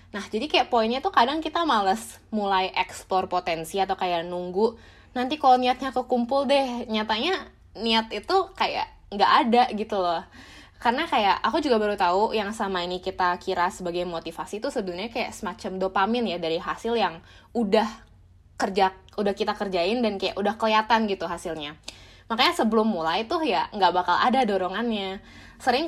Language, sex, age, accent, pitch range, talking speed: Indonesian, female, 20-39, native, 180-230 Hz, 165 wpm